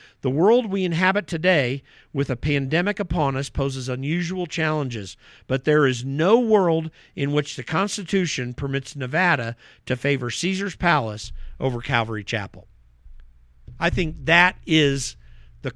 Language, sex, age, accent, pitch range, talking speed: English, male, 50-69, American, 130-175 Hz, 135 wpm